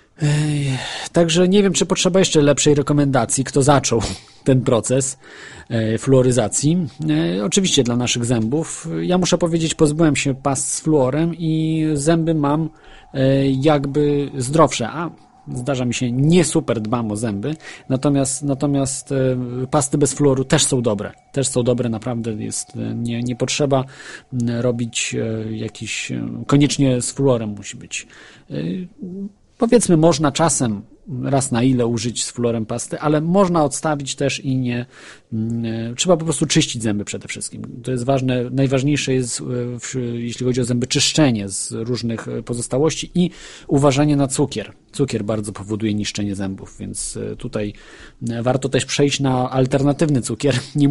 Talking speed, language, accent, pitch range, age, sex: 135 wpm, Polish, native, 120-150 Hz, 40-59, male